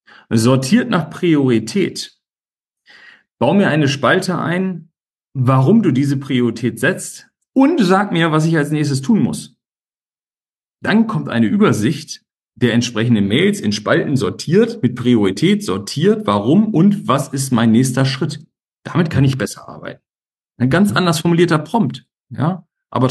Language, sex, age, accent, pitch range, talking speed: German, male, 40-59, German, 120-155 Hz, 140 wpm